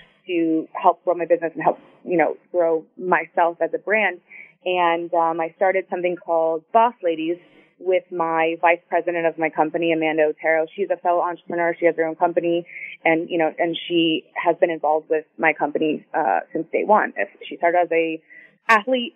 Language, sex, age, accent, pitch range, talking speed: English, female, 20-39, American, 170-200 Hz, 190 wpm